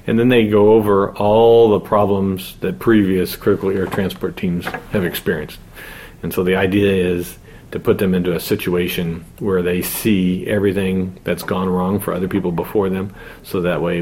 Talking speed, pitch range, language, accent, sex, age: 180 wpm, 85-100 Hz, English, American, male, 40-59